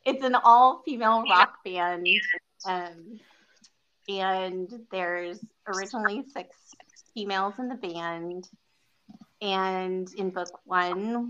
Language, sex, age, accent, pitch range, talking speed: English, female, 30-49, American, 175-215 Hz, 95 wpm